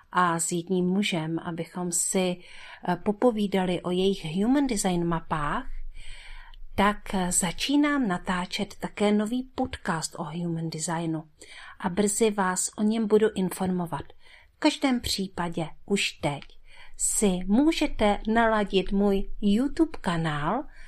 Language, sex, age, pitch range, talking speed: Czech, female, 50-69, 175-225 Hz, 110 wpm